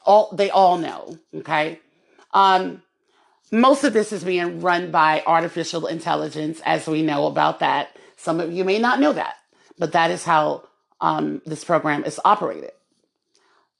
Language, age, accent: English, 30-49, American